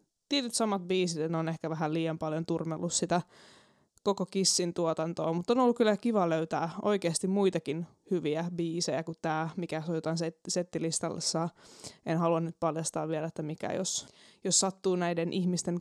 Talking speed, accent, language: 155 wpm, native, Finnish